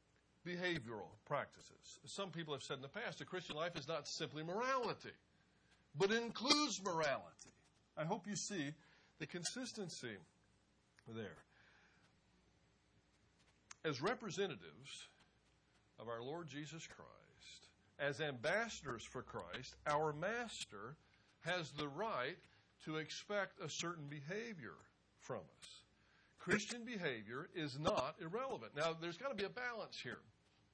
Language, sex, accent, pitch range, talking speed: English, male, American, 145-190 Hz, 120 wpm